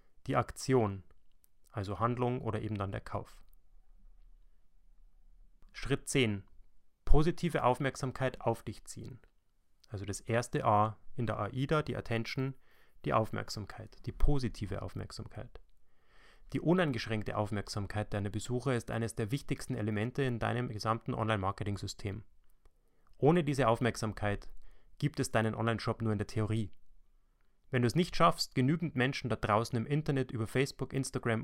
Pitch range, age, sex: 105-130 Hz, 30-49, male